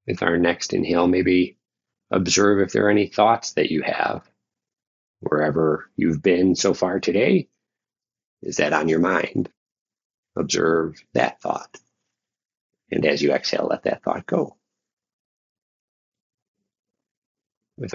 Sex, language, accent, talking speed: male, English, American, 125 wpm